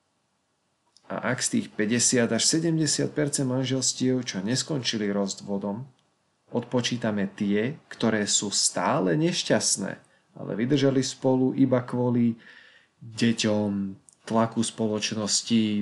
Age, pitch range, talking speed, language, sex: 30-49, 110-130 Hz, 95 wpm, Slovak, male